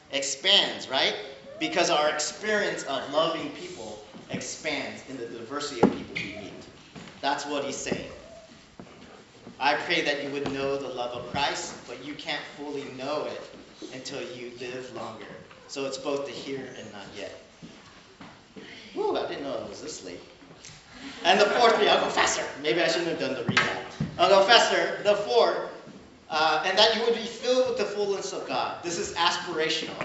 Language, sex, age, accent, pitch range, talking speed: English, male, 40-59, American, 140-190 Hz, 180 wpm